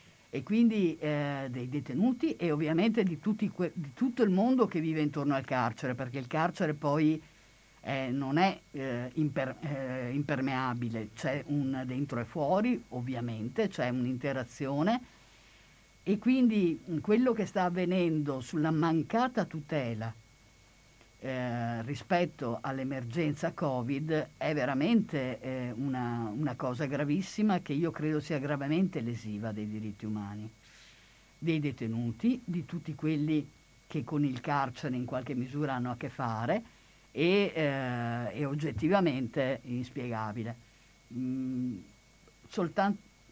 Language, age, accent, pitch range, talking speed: Italian, 50-69, native, 125-175 Hz, 120 wpm